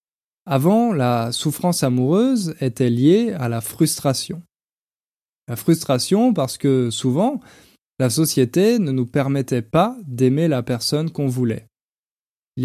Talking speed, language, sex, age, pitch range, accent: 125 wpm, French, male, 20-39, 125-170 Hz, French